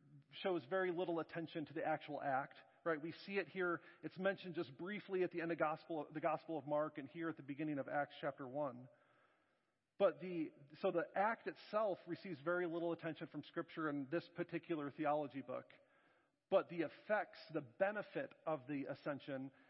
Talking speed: 185 wpm